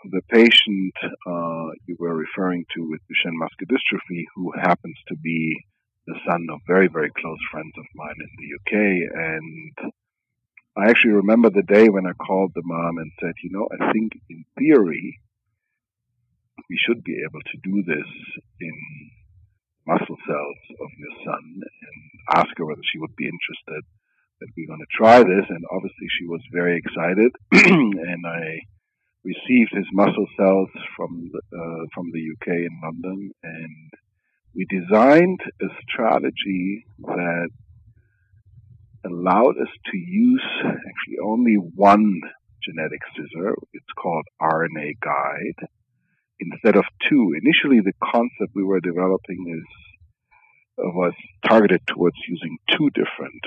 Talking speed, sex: 145 wpm, male